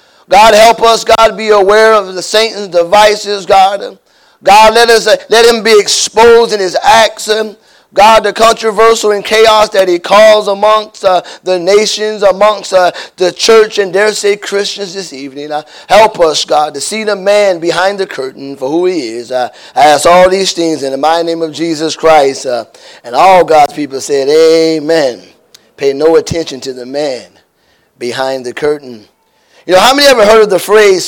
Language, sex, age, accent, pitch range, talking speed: English, male, 30-49, American, 165-220 Hz, 190 wpm